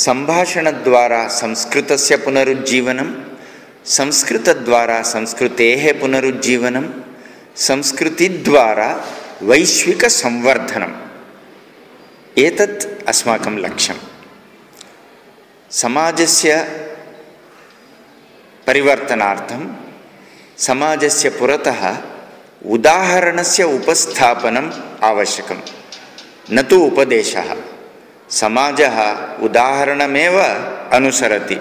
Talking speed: 45 wpm